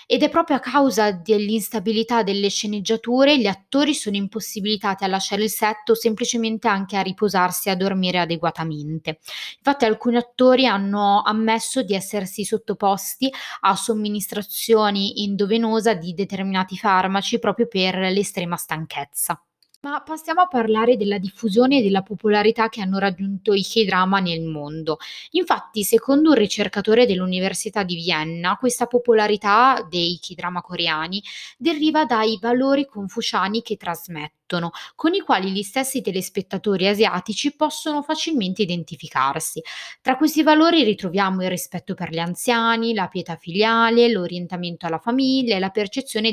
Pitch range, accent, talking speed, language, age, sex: 185-230 Hz, native, 135 wpm, Italian, 20-39, female